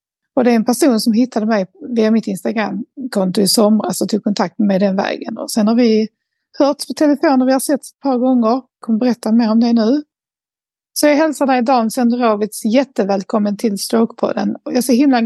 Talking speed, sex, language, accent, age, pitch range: 225 wpm, female, Swedish, native, 30-49, 205-250 Hz